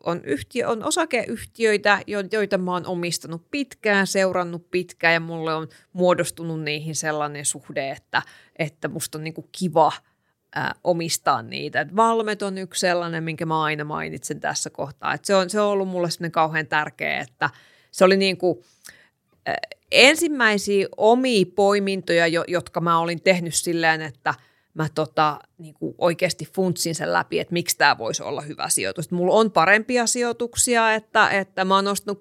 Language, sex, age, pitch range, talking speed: Finnish, female, 30-49, 165-200 Hz, 160 wpm